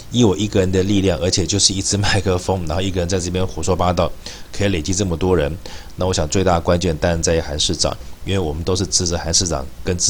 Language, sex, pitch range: Chinese, male, 85-110 Hz